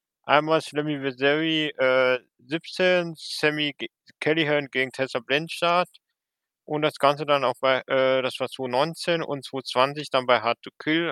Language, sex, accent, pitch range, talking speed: German, male, German, 130-155 Hz, 145 wpm